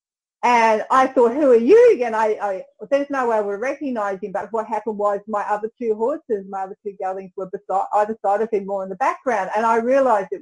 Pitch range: 190-250 Hz